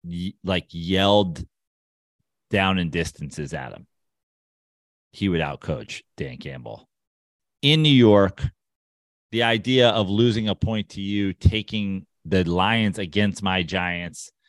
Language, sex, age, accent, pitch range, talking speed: English, male, 30-49, American, 90-120 Hz, 125 wpm